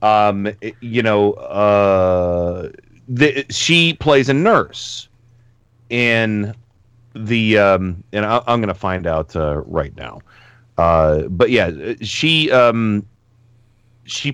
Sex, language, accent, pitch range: male, English, American, 100-120 Hz